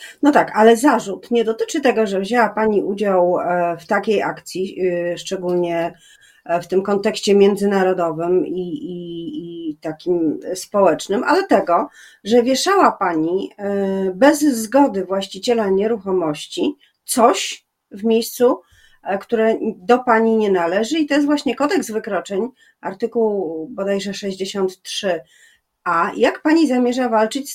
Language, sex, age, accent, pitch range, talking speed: Polish, female, 30-49, native, 185-225 Hz, 120 wpm